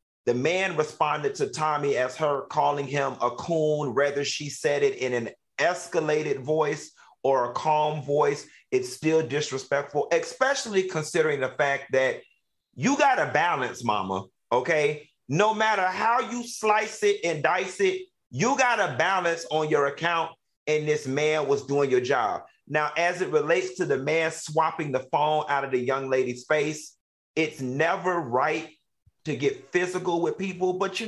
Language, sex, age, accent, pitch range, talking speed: English, male, 40-59, American, 145-190 Hz, 165 wpm